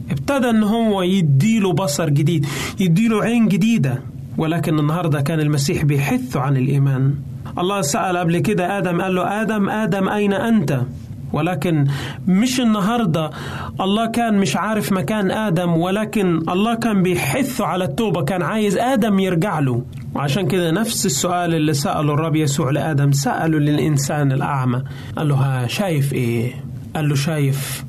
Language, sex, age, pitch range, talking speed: Arabic, male, 30-49, 135-185 Hz, 140 wpm